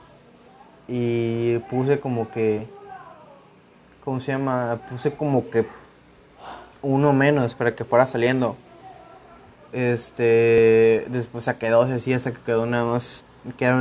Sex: male